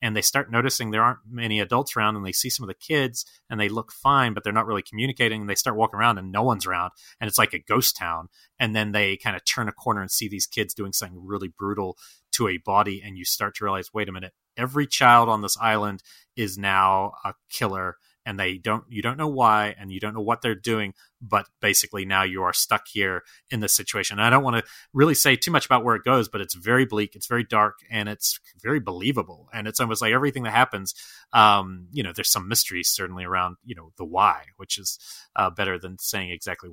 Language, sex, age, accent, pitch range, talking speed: English, male, 30-49, American, 95-115 Hz, 245 wpm